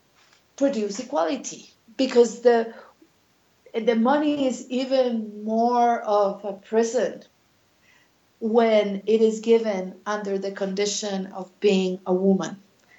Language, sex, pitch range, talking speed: English, female, 200-255 Hz, 105 wpm